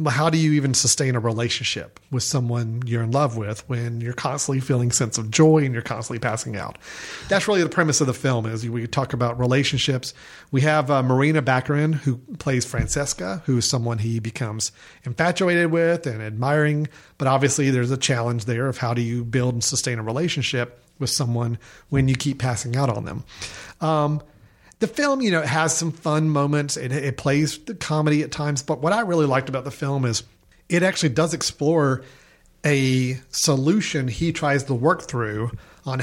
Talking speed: 195 wpm